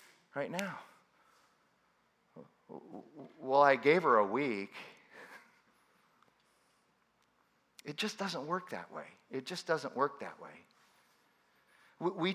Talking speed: 100 wpm